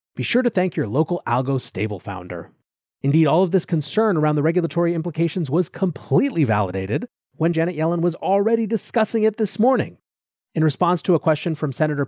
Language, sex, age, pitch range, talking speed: English, male, 30-49, 130-175 Hz, 185 wpm